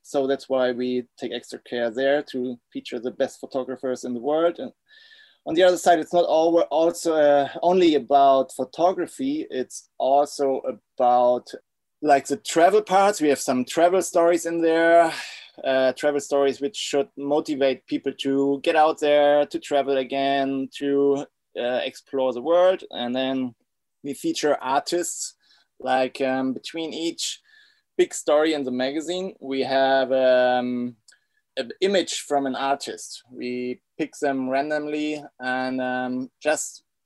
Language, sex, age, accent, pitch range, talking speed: English, male, 20-39, German, 130-165 Hz, 150 wpm